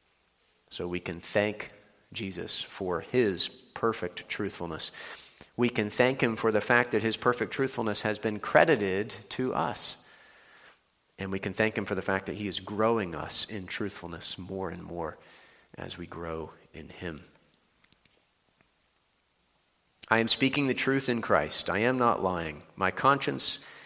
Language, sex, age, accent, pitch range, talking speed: English, male, 40-59, American, 95-115 Hz, 155 wpm